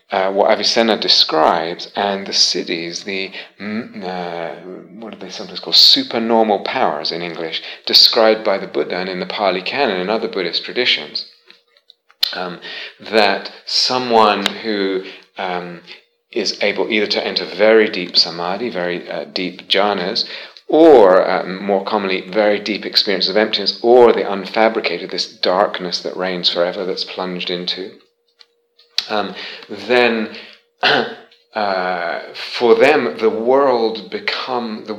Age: 30-49